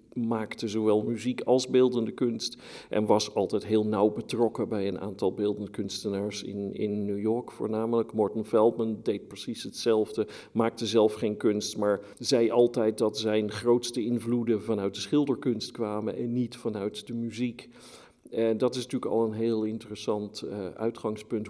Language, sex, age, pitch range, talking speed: Dutch, male, 50-69, 105-120 Hz, 160 wpm